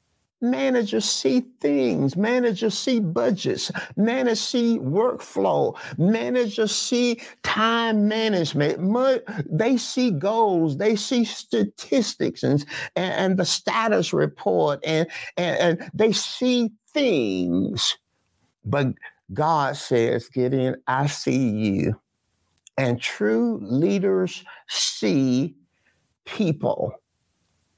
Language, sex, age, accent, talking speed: English, male, 60-79, American, 95 wpm